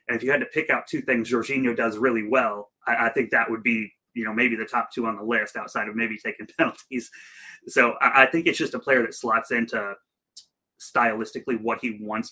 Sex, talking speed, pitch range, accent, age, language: male, 235 wpm, 110-125 Hz, American, 30-49, English